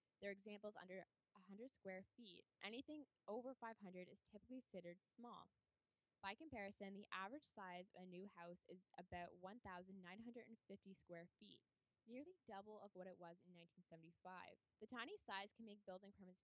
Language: English